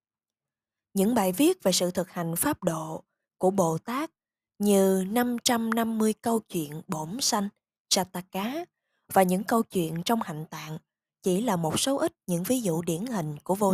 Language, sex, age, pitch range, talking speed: Vietnamese, female, 20-39, 175-230 Hz, 165 wpm